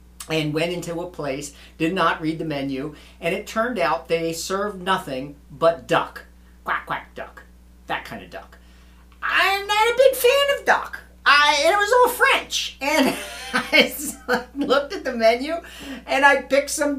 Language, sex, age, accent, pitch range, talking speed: English, male, 50-69, American, 145-235 Hz, 175 wpm